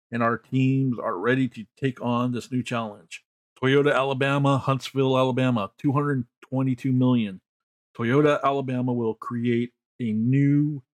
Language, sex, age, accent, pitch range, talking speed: English, male, 50-69, American, 115-135 Hz, 125 wpm